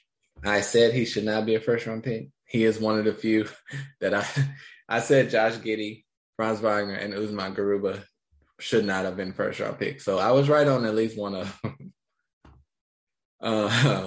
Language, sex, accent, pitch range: English, male, American, 100-115 Hz